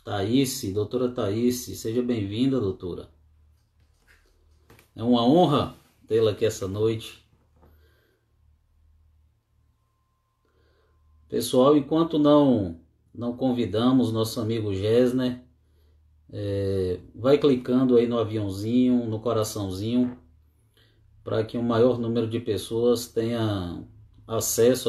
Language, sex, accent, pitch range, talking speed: Portuguese, male, Brazilian, 90-120 Hz, 90 wpm